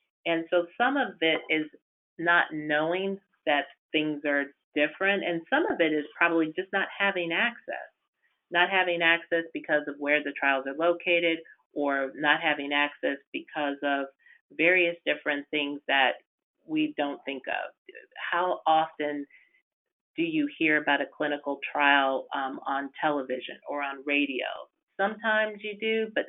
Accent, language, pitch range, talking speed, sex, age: American, English, 145-170 Hz, 150 wpm, female, 40-59